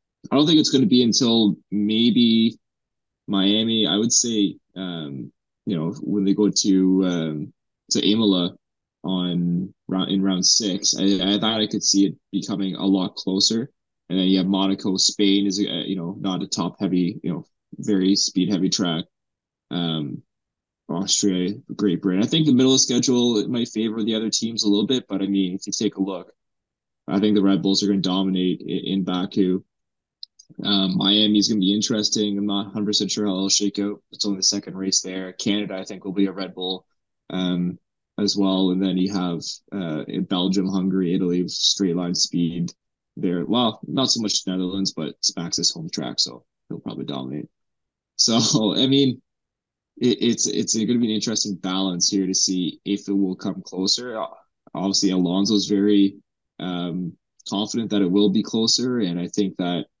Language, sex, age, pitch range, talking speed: English, male, 20-39, 95-105 Hz, 180 wpm